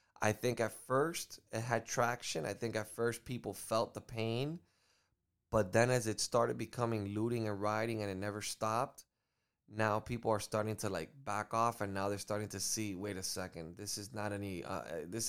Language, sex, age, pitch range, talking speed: English, male, 20-39, 100-115 Hz, 200 wpm